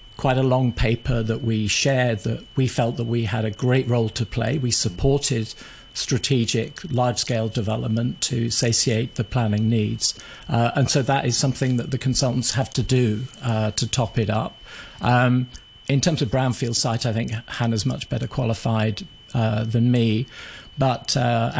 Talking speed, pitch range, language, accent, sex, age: 170 wpm, 115-130 Hz, English, British, male, 50-69